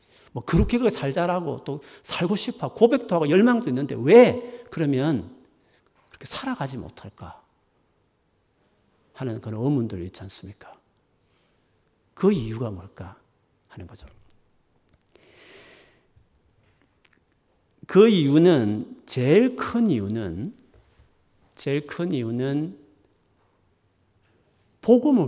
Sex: male